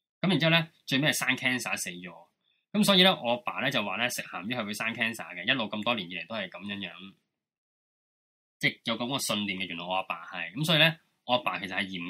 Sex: male